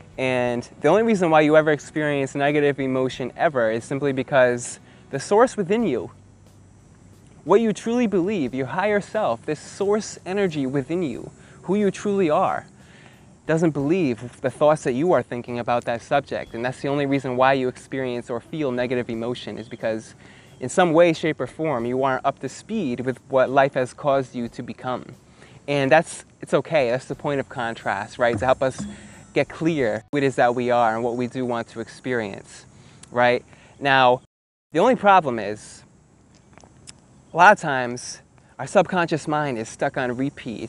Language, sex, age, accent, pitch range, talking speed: English, male, 20-39, American, 120-150 Hz, 180 wpm